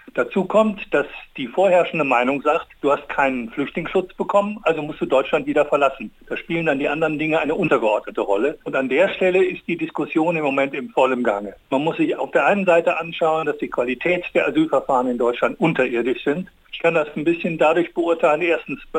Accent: German